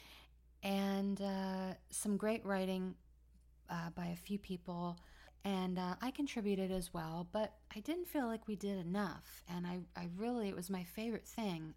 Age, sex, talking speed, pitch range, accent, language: 30-49, female, 170 wpm, 170-200 Hz, American, English